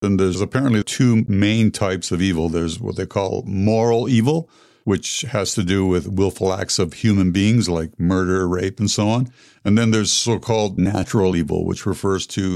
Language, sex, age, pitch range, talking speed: English, male, 60-79, 90-110 Hz, 185 wpm